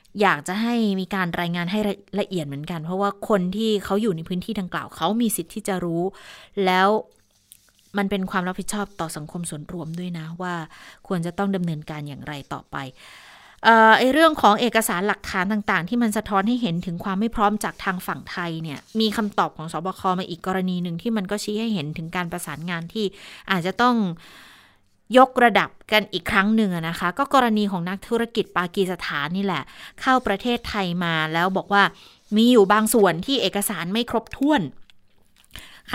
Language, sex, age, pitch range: Thai, female, 20-39, 175-215 Hz